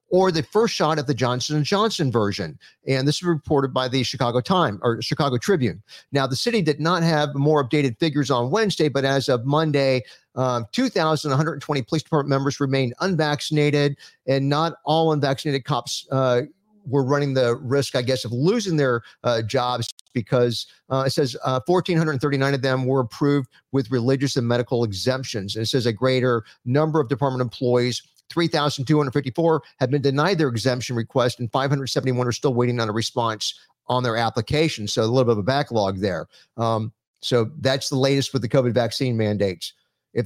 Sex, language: male, English